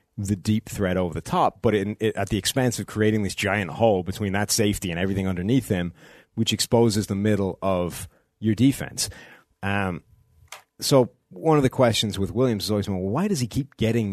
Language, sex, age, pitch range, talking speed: English, male, 30-49, 95-120 Hz, 190 wpm